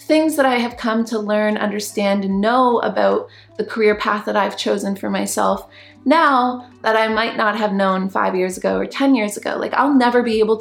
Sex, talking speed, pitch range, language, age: female, 215 wpm, 195-225 Hz, English, 30-49